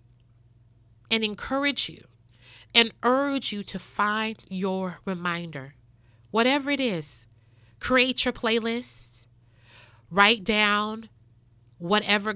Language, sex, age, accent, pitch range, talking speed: English, female, 30-49, American, 130-210 Hz, 90 wpm